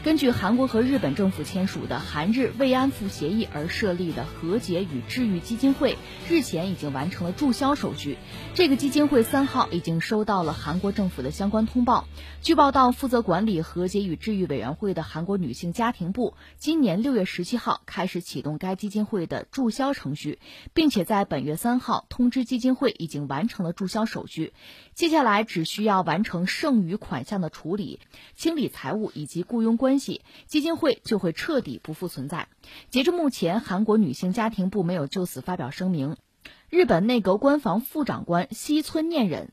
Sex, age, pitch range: female, 20-39, 175-245 Hz